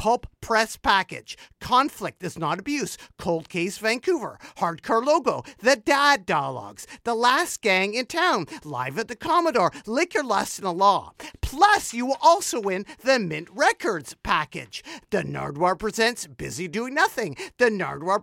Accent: American